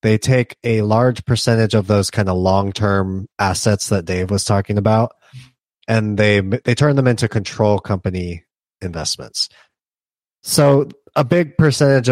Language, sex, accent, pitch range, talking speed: English, male, American, 100-120 Hz, 145 wpm